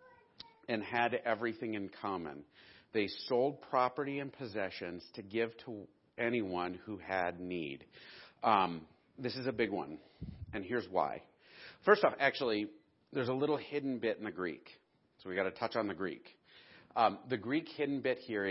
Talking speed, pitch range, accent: 165 wpm, 105-130 Hz, American